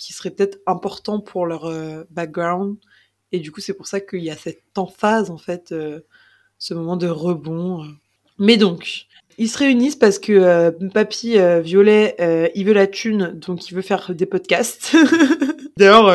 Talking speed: 175 wpm